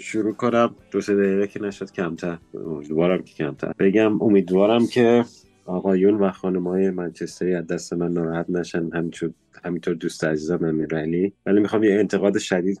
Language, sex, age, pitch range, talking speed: Persian, male, 30-49, 85-105 Hz, 150 wpm